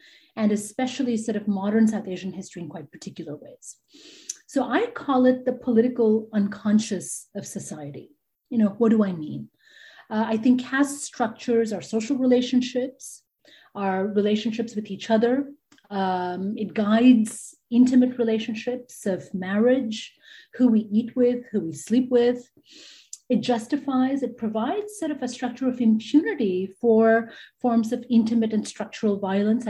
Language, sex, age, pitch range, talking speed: English, female, 30-49, 200-250 Hz, 145 wpm